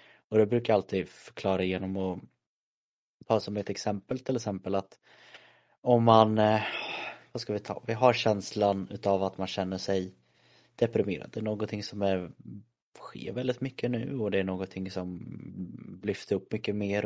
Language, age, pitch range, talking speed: Swedish, 20-39, 95-105 Hz, 170 wpm